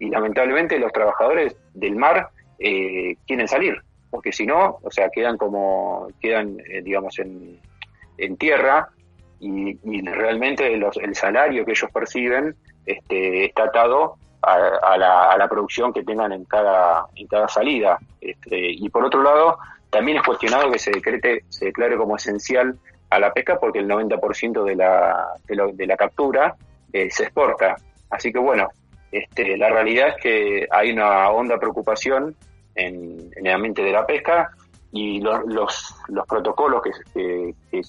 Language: Spanish